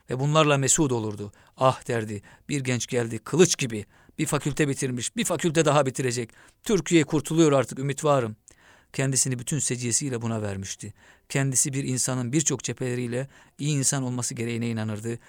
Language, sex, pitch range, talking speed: Turkish, male, 120-150 Hz, 150 wpm